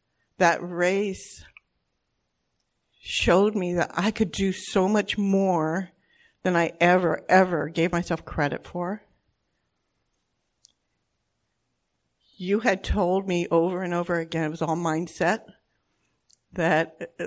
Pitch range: 155-190 Hz